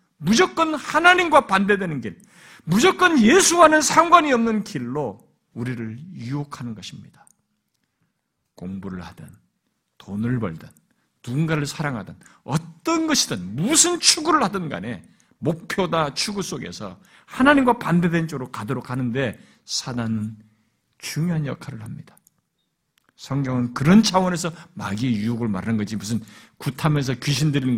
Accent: native